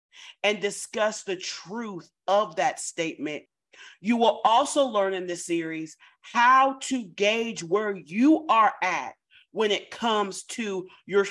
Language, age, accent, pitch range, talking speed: English, 40-59, American, 185-275 Hz, 140 wpm